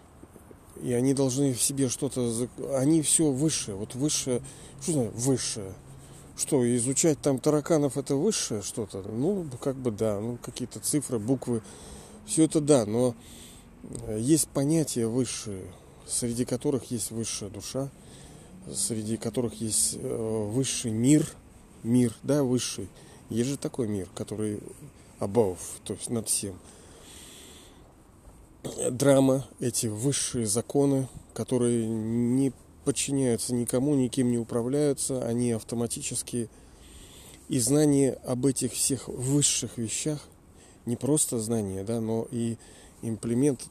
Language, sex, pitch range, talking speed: Russian, male, 110-135 Hz, 120 wpm